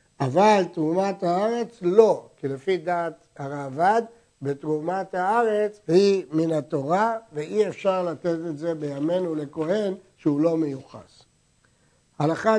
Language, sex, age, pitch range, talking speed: Hebrew, male, 60-79, 165-210 Hz, 115 wpm